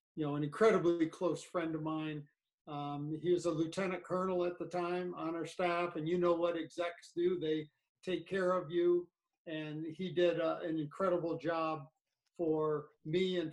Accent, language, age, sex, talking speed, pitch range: American, English, 50-69, male, 180 wpm, 155-180 Hz